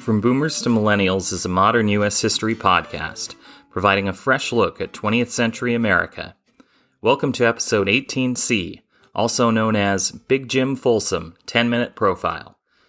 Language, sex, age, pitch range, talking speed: English, male, 30-49, 95-120 Hz, 140 wpm